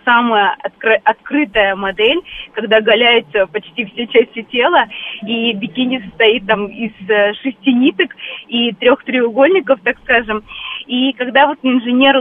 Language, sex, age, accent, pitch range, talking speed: Russian, female, 20-39, native, 215-270 Hz, 130 wpm